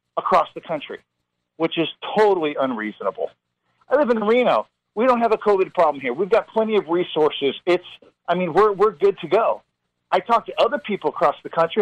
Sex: male